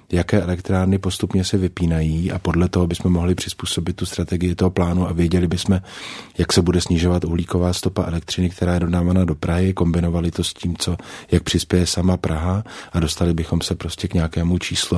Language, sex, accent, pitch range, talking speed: Czech, male, native, 85-95 Hz, 190 wpm